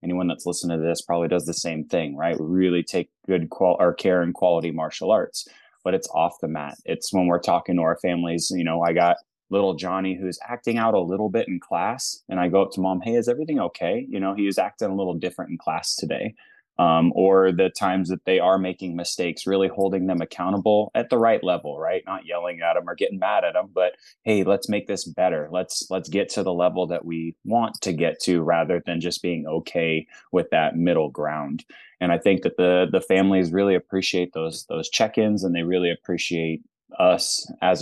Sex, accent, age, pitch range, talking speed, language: male, American, 20-39, 85-95 Hz, 225 wpm, English